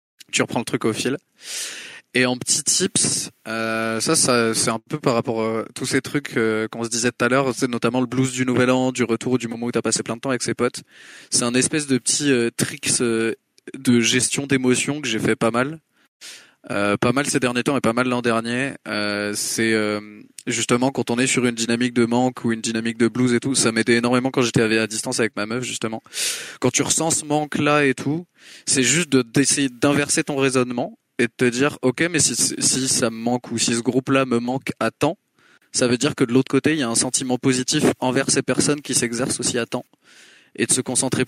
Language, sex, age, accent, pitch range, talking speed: French, male, 20-39, French, 115-135 Hz, 240 wpm